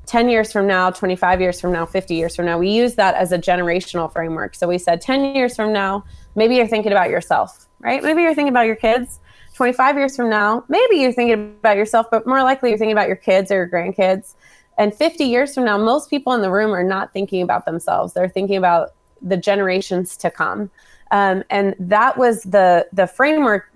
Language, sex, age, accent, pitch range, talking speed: English, female, 20-39, American, 180-215 Hz, 220 wpm